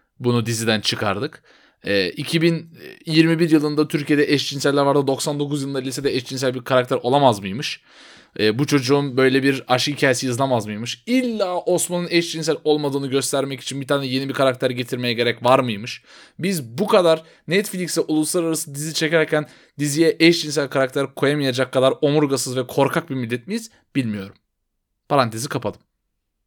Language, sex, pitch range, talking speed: Turkish, male, 125-160 Hz, 140 wpm